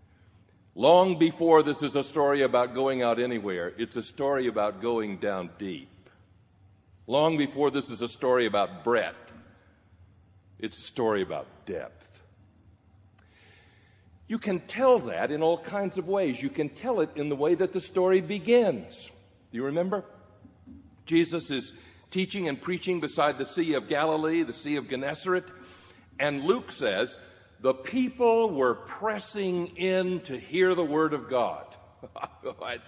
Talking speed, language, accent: 150 wpm, English, American